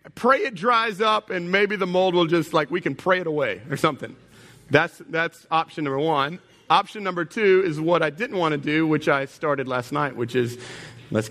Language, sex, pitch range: English, male, 125-185 Hz